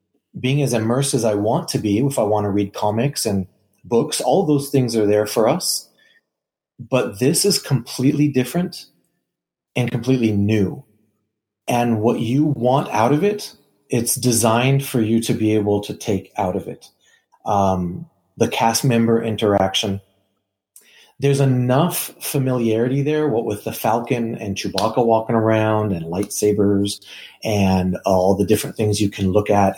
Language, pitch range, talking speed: English, 100-125 Hz, 155 wpm